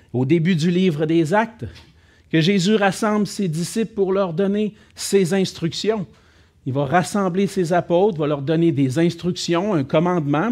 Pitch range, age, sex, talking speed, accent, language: 135-195 Hz, 50-69, male, 160 wpm, Canadian, French